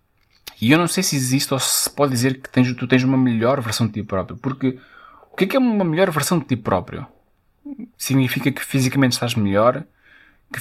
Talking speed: 205 wpm